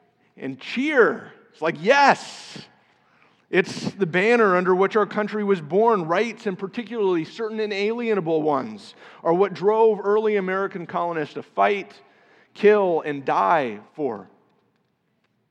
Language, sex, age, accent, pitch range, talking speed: English, male, 50-69, American, 155-195 Hz, 125 wpm